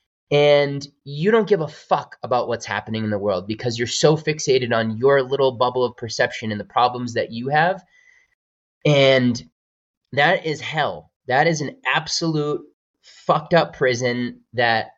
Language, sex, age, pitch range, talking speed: English, male, 20-39, 120-155 Hz, 160 wpm